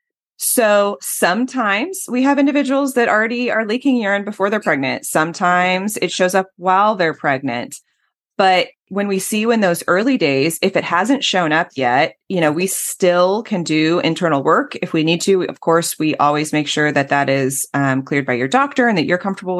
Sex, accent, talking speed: female, American, 200 wpm